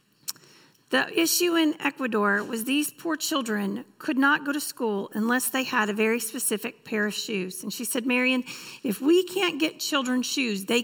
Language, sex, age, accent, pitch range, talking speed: English, female, 40-59, American, 215-300 Hz, 185 wpm